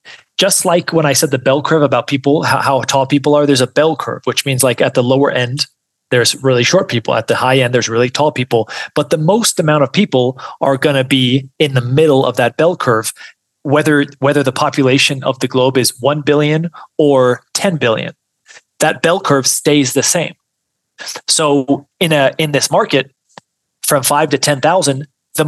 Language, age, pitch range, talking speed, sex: English, 30-49, 130-155 Hz, 200 wpm, male